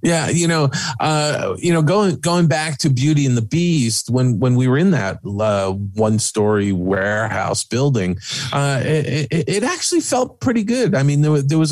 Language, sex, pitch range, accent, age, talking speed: English, male, 100-140 Hz, American, 40-59, 195 wpm